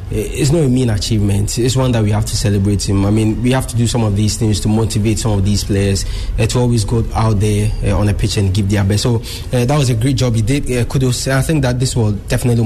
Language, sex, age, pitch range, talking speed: English, male, 20-39, 105-120 Hz, 285 wpm